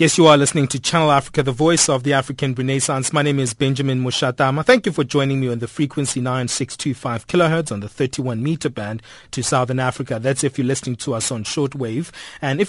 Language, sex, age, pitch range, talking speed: English, male, 30-49, 120-150 Hz, 215 wpm